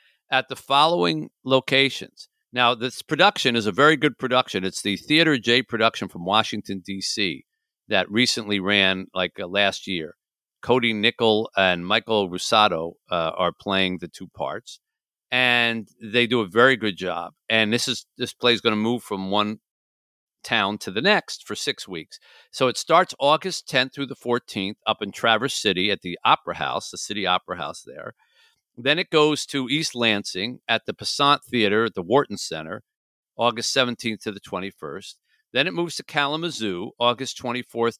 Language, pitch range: English, 100-130 Hz